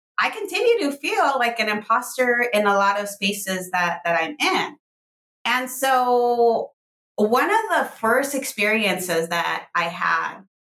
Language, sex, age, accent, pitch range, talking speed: English, female, 20-39, American, 175-240 Hz, 145 wpm